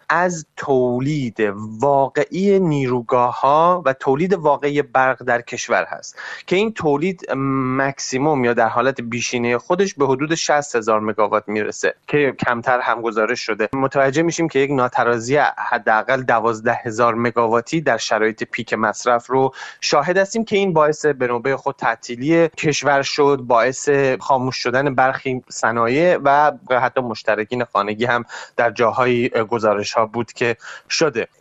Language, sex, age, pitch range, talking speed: Persian, male, 30-49, 115-145 Hz, 140 wpm